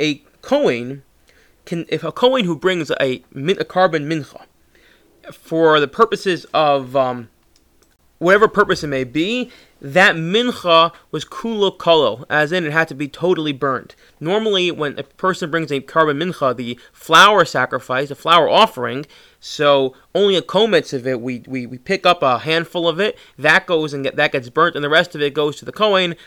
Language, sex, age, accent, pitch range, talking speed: English, male, 20-39, American, 145-185 Hz, 180 wpm